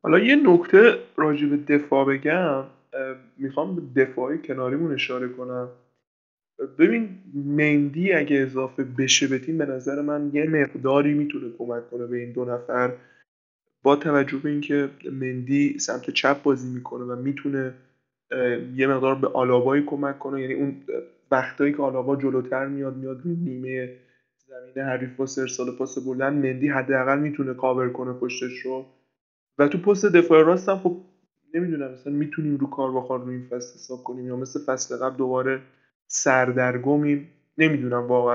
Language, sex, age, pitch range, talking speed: Persian, male, 20-39, 130-145 Hz, 150 wpm